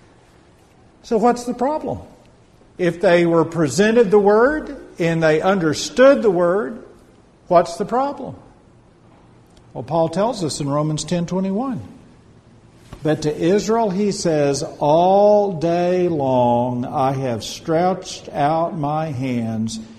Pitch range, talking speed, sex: 125-200 Hz, 120 wpm, male